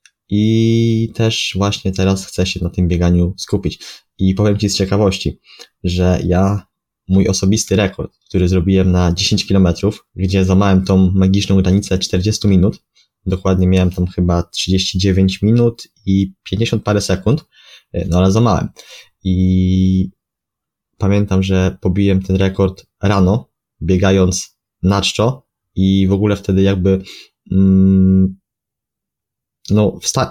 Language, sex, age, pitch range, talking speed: Polish, male, 20-39, 95-105 Hz, 125 wpm